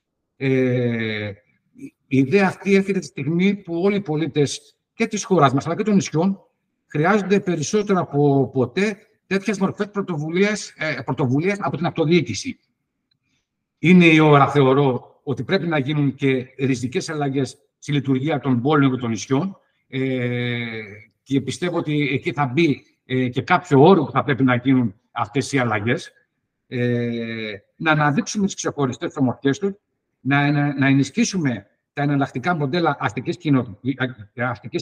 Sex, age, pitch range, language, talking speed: male, 60-79, 130-180 Hz, Greek, 140 wpm